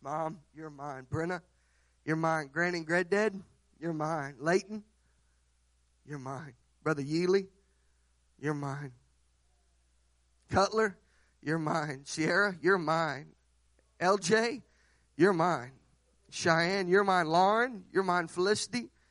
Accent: American